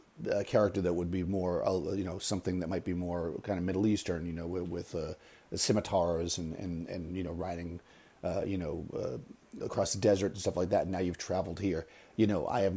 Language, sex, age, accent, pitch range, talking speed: English, male, 40-59, American, 85-100 Hz, 230 wpm